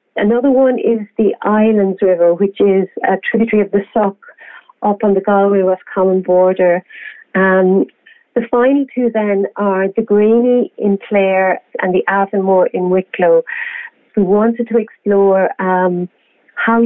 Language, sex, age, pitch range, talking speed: English, female, 40-59, 180-210 Hz, 145 wpm